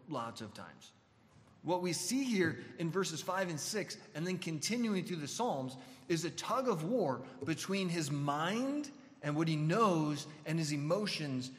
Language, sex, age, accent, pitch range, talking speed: English, male, 30-49, American, 140-185 Hz, 170 wpm